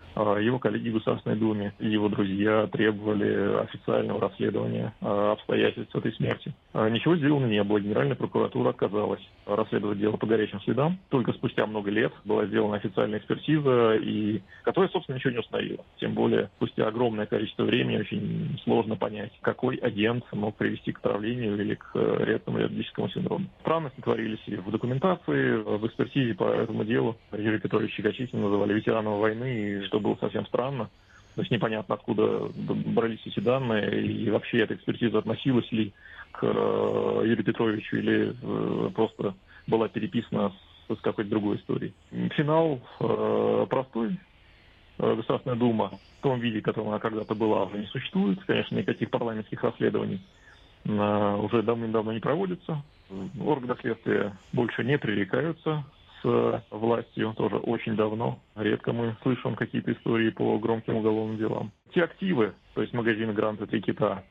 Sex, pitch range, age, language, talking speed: male, 105-125 Hz, 30-49, Russian, 150 wpm